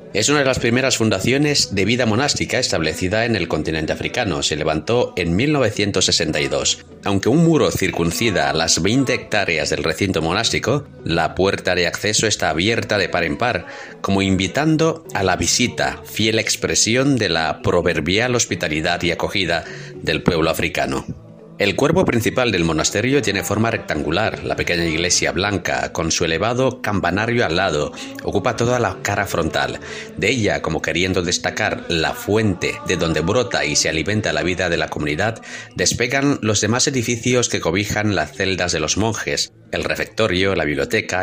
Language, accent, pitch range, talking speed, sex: Spanish, Spanish, 90-120 Hz, 160 wpm, male